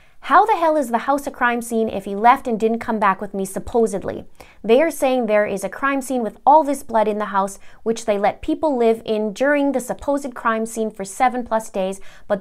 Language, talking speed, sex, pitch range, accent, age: English, 240 wpm, female, 205-270 Hz, American, 20-39